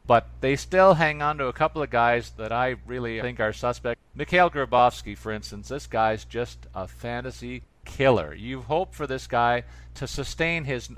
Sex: male